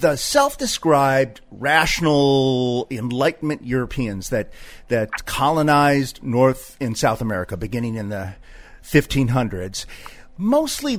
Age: 40-59